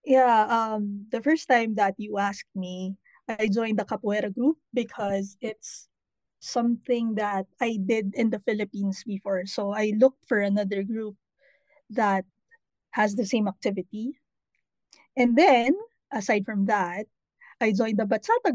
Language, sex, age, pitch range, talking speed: Slovak, female, 20-39, 205-250 Hz, 140 wpm